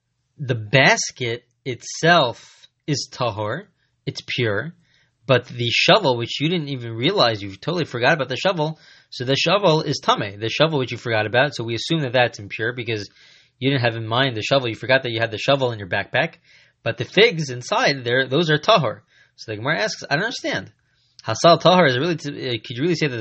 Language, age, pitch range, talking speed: English, 20-39, 120-145 Hz, 210 wpm